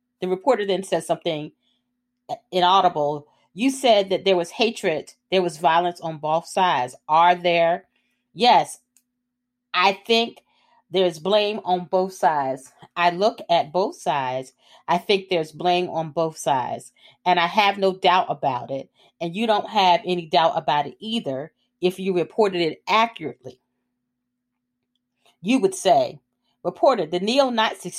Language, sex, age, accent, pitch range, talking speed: English, female, 40-59, American, 165-235 Hz, 145 wpm